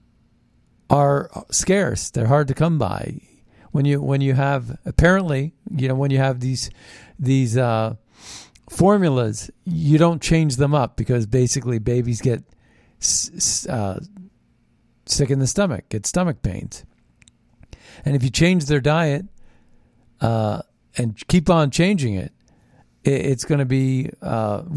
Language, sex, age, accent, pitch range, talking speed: English, male, 50-69, American, 120-160 Hz, 145 wpm